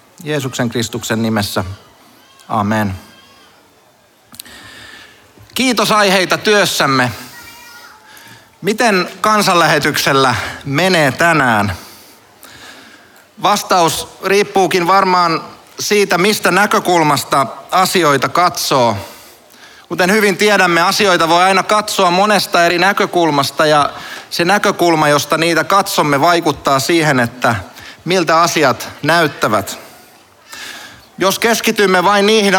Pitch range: 140-195 Hz